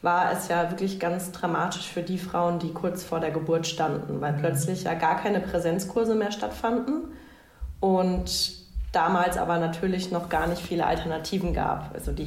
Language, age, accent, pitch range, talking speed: German, 30-49, German, 155-175 Hz, 170 wpm